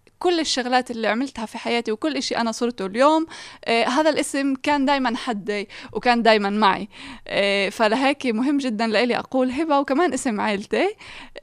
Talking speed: 145 wpm